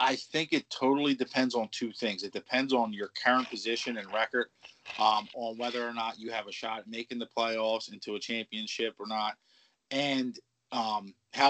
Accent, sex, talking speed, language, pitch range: American, male, 190 wpm, English, 110-130 Hz